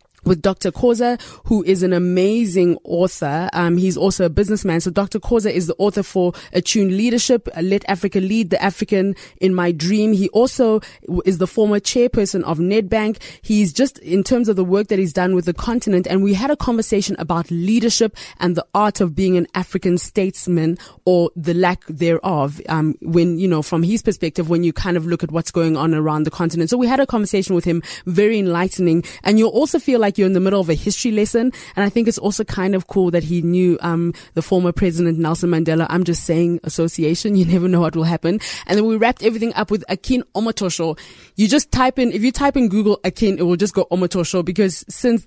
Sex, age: female, 20-39